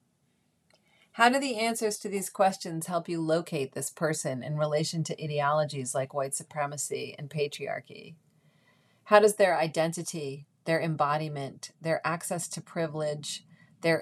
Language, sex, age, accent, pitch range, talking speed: English, female, 30-49, American, 160-205 Hz, 135 wpm